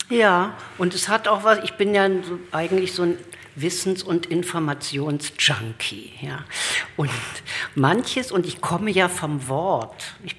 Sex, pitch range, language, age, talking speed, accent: female, 145-185 Hz, German, 50-69, 140 wpm, German